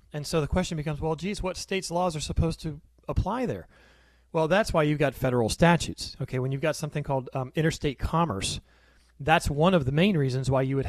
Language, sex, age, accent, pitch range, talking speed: English, male, 30-49, American, 115-160 Hz, 220 wpm